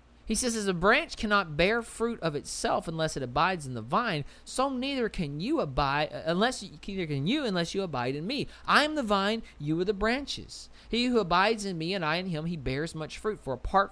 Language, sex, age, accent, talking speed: English, male, 40-59, American, 235 wpm